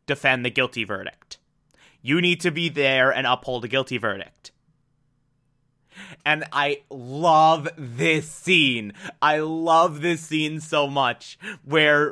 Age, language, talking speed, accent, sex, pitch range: 20-39, English, 130 wpm, American, male, 145-220 Hz